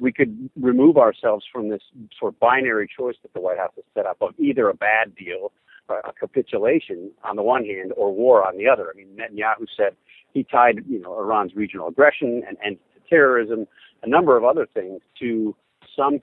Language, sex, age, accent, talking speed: English, male, 50-69, American, 205 wpm